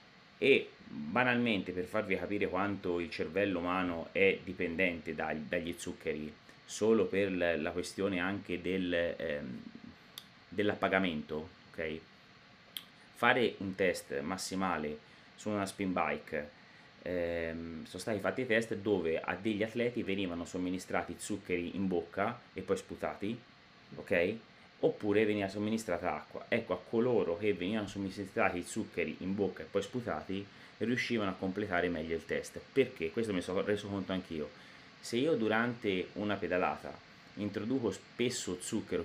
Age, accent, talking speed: 30-49, native, 135 wpm